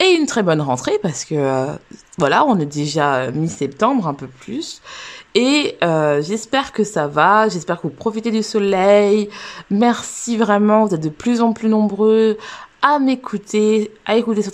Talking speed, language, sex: 180 wpm, French, female